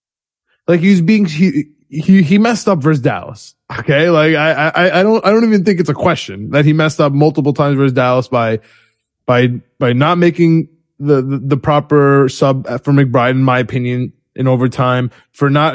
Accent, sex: American, male